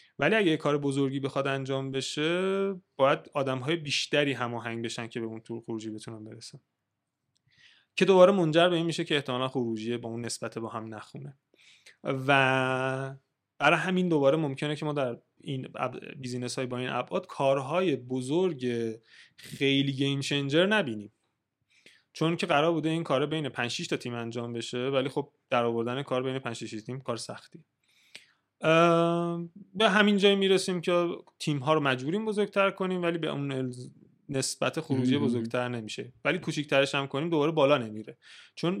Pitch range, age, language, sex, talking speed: 120-160 Hz, 20-39, Persian, male, 165 wpm